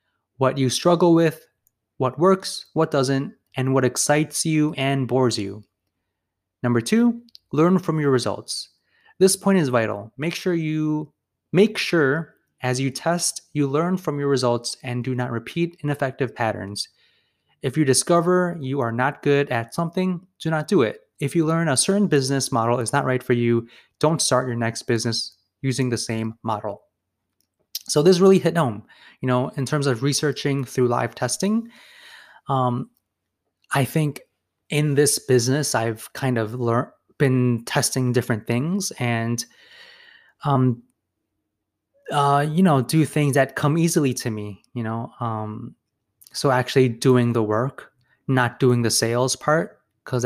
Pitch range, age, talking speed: 120-155 Hz, 20-39, 160 wpm